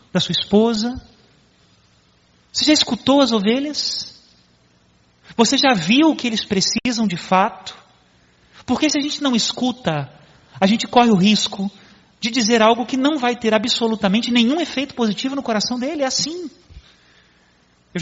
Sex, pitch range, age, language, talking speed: male, 185-245 Hz, 30-49, Portuguese, 150 wpm